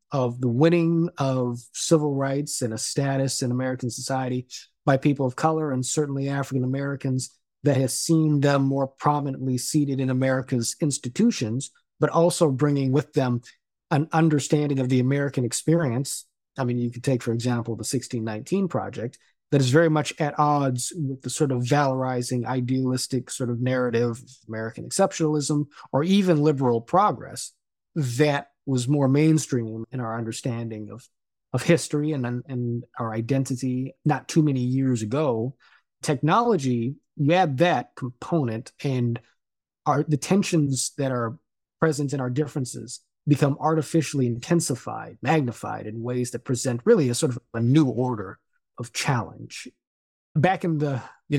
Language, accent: English, American